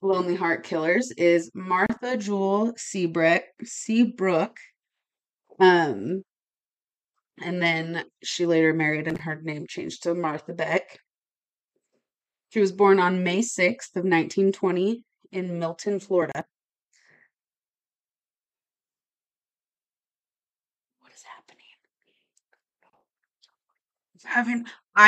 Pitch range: 165-195 Hz